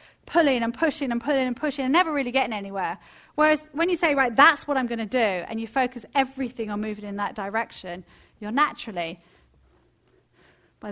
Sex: female